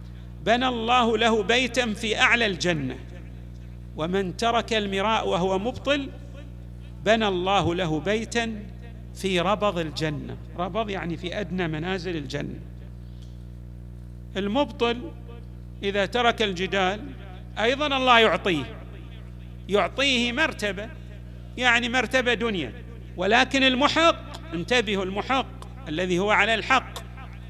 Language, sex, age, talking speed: Arabic, male, 50-69, 100 wpm